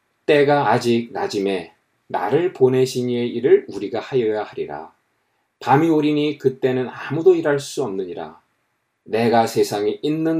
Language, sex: Korean, male